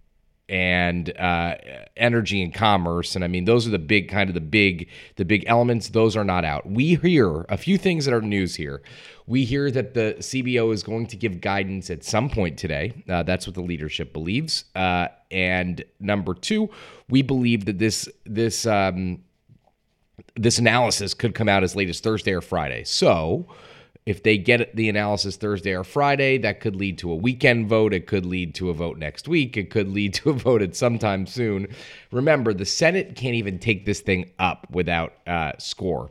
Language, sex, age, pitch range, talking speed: English, male, 30-49, 90-115 Hz, 195 wpm